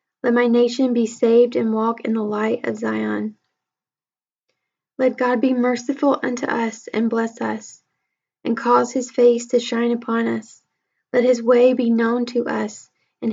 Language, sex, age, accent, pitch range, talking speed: English, female, 10-29, American, 220-245 Hz, 165 wpm